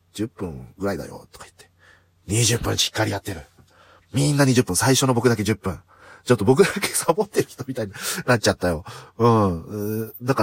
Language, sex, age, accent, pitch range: Japanese, male, 40-59, native, 95-135 Hz